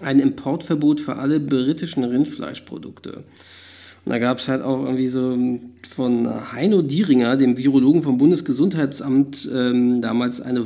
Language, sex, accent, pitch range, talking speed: German, male, German, 130-160 Hz, 135 wpm